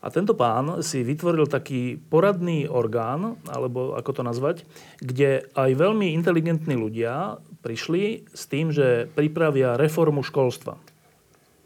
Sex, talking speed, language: male, 125 wpm, Slovak